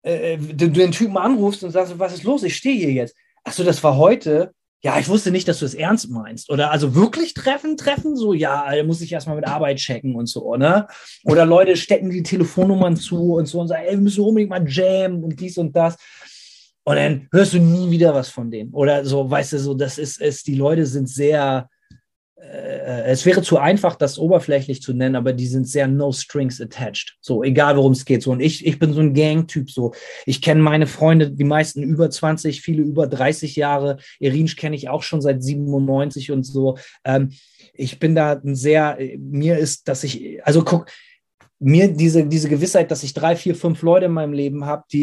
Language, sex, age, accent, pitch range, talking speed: German, male, 30-49, German, 140-170 Hz, 215 wpm